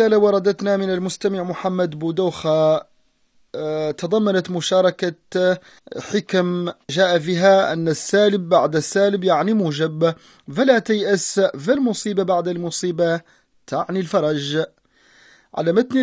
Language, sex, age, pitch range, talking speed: Arabic, male, 30-49, 170-205 Hz, 90 wpm